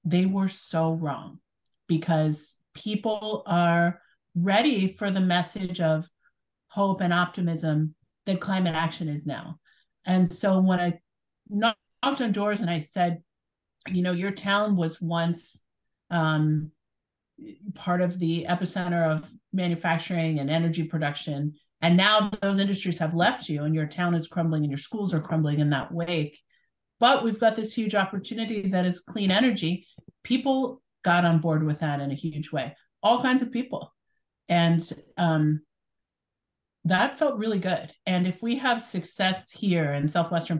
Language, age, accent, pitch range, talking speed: English, 40-59, American, 155-190 Hz, 155 wpm